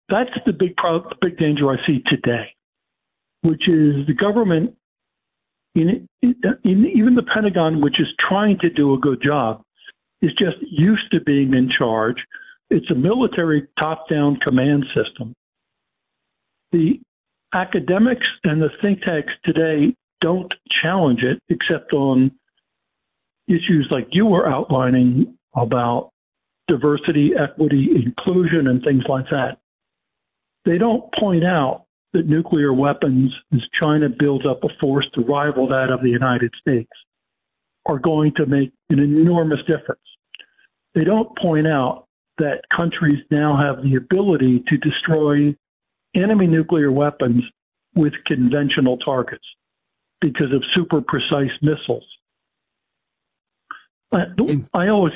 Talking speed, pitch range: 130 wpm, 140-180 Hz